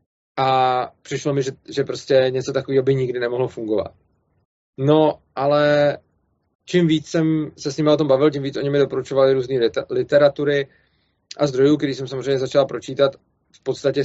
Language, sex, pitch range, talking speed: Czech, male, 120-140 Hz, 170 wpm